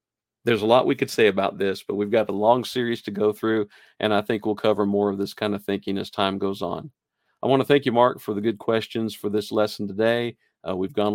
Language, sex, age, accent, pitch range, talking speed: English, male, 50-69, American, 100-120 Hz, 265 wpm